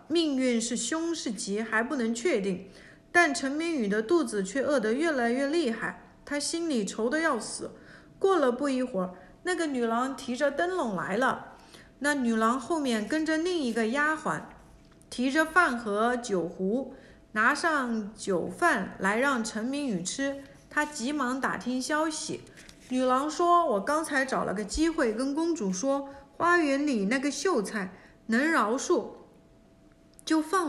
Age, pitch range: 50-69, 225-310 Hz